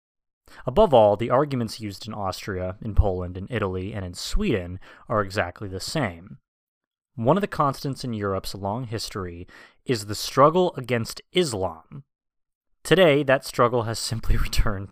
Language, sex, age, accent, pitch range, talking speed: English, male, 20-39, American, 100-135 Hz, 150 wpm